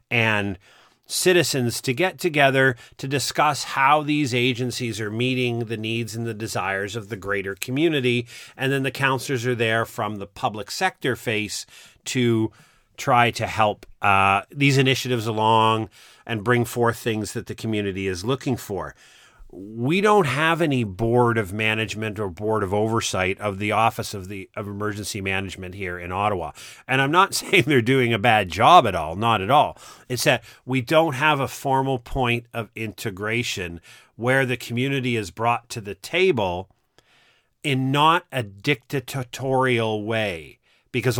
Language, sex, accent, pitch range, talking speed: English, male, American, 110-135 Hz, 160 wpm